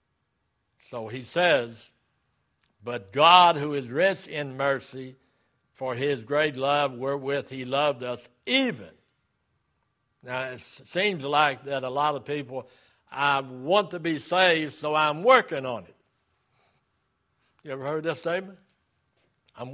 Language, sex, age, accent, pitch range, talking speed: English, male, 60-79, American, 130-165 Hz, 135 wpm